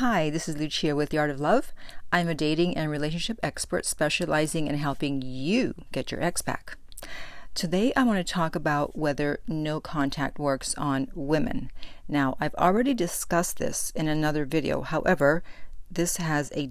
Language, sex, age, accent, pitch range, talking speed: English, female, 50-69, American, 145-170 Hz, 170 wpm